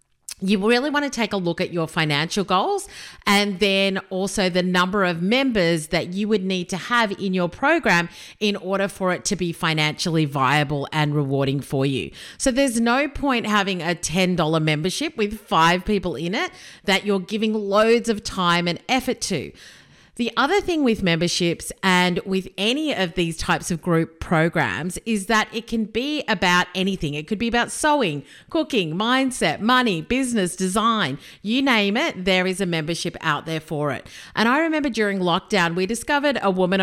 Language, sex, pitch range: English, female, 170-225 Hz